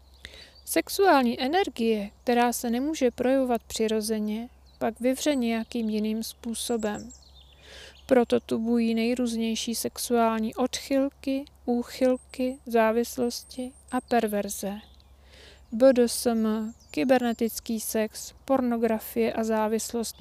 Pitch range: 210-245 Hz